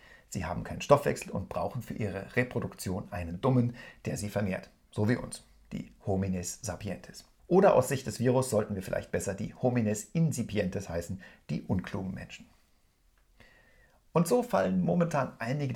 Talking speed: 155 wpm